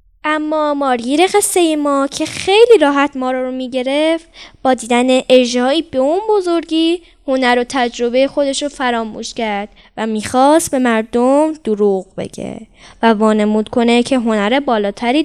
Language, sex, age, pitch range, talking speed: Persian, female, 10-29, 250-340 Hz, 140 wpm